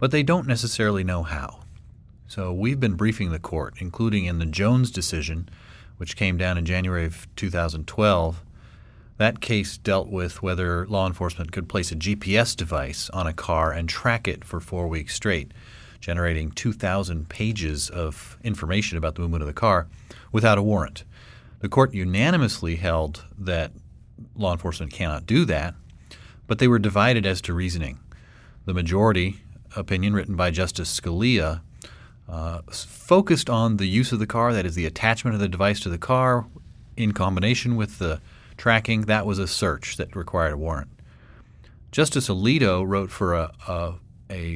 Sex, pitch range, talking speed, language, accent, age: male, 85-110 Hz, 165 wpm, English, American, 40-59